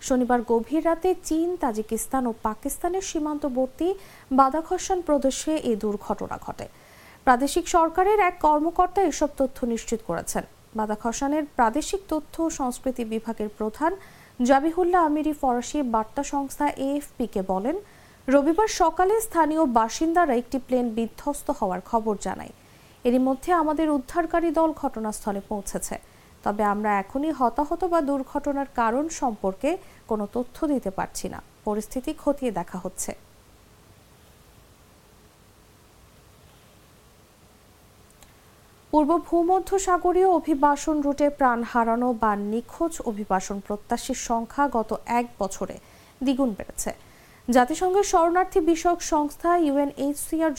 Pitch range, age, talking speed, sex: 230-325 Hz, 50-69, 95 wpm, female